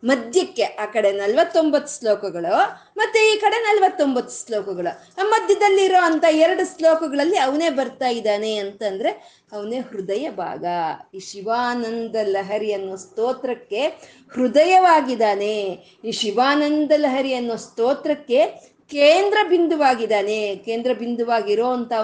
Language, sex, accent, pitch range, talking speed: Kannada, female, native, 215-315 Hz, 95 wpm